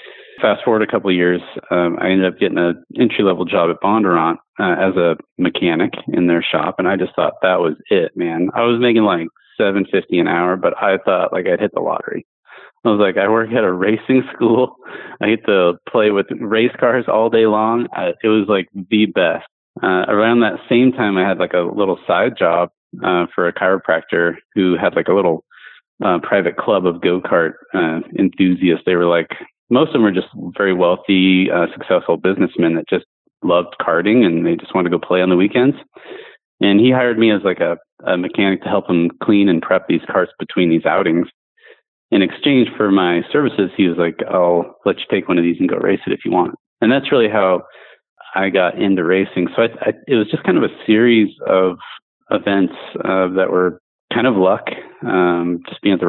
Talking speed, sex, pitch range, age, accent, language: 215 wpm, male, 90-110 Hz, 30-49, American, English